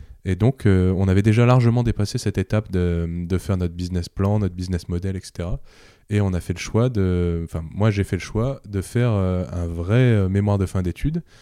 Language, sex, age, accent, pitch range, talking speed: French, male, 20-39, French, 95-110 Hz, 220 wpm